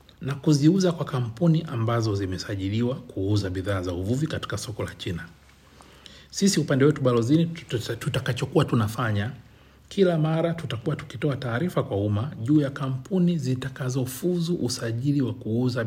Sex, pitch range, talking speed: male, 105-135 Hz, 130 wpm